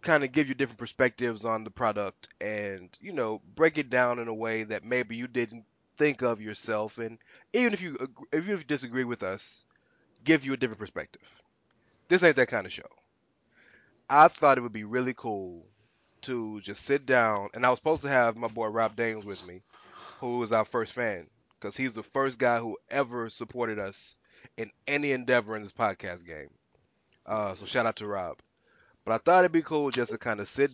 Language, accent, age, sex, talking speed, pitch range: English, American, 20-39, male, 210 wpm, 110-130 Hz